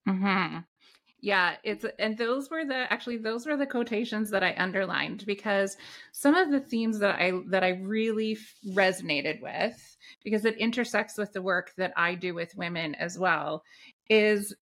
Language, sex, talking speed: English, female, 170 wpm